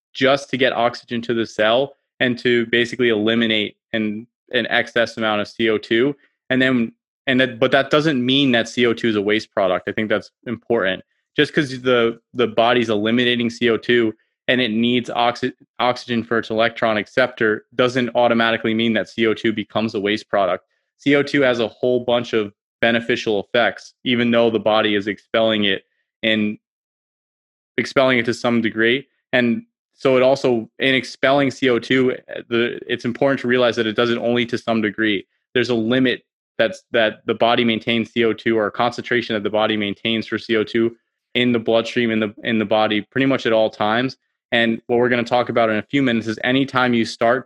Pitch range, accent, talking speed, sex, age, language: 115-125 Hz, American, 185 wpm, male, 20-39, English